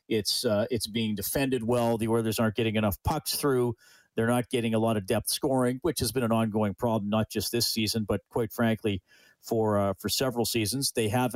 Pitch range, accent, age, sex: 110-130 Hz, American, 40-59, male